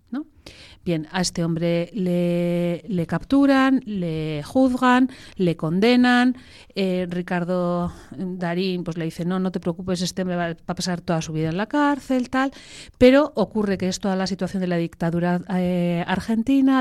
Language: Spanish